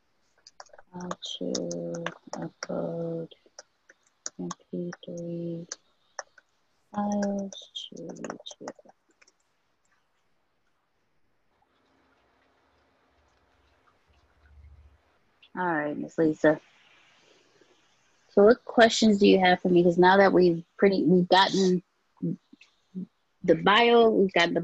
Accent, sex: American, female